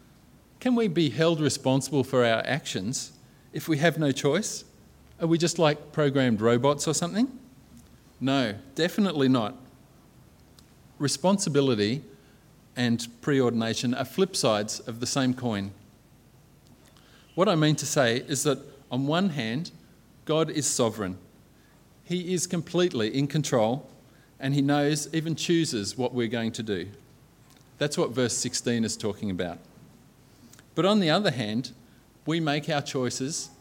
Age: 40-59